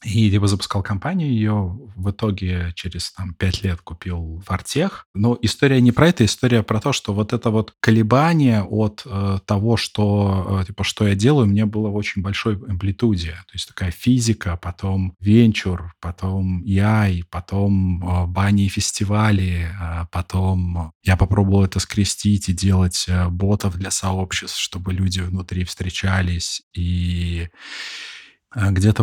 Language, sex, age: Russian, male, 20-39